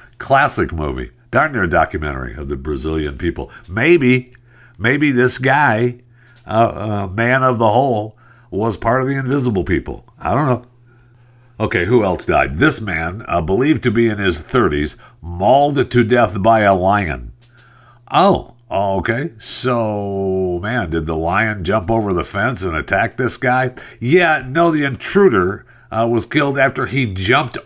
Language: English